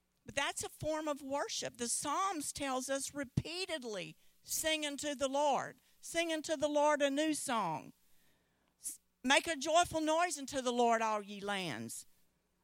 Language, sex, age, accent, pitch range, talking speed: English, female, 50-69, American, 200-310 Hz, 150 wpm